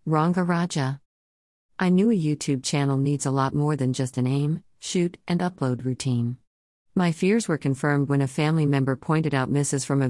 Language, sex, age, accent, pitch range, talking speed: English, female, 50-69, American, 130-160 Hz, 190 wpm